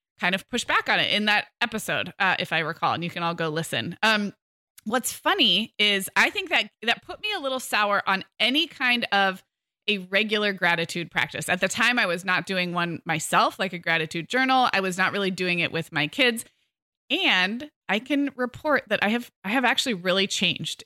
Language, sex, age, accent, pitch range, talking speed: English, female, 20-39, American, 180-240 Hz, 215 wpm